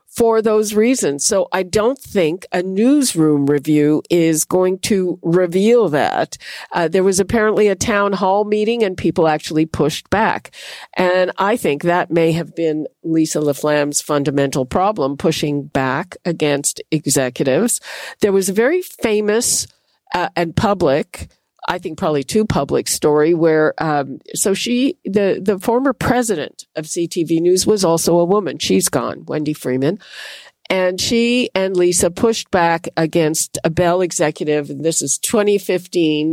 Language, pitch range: English, 155-200 Hz